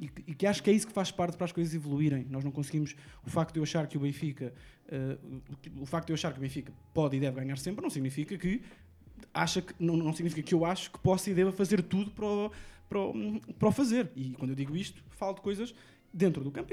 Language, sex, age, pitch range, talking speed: Portuguese, male, 20-39, 130-175 Hz, 270 wpm